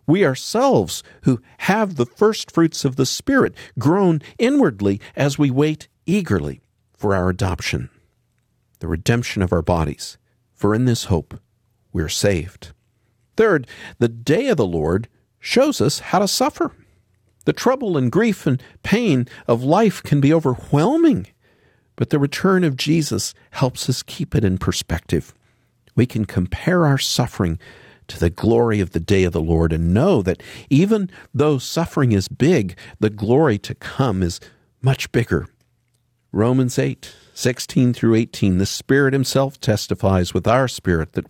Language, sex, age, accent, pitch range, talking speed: English, male, 50-69, American, 95-140 Hz, 155 wpm